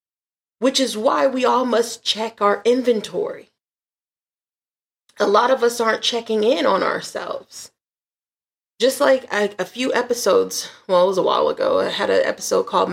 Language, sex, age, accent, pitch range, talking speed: English, female, 30-49, American, 205-280 Hz, 160 wpm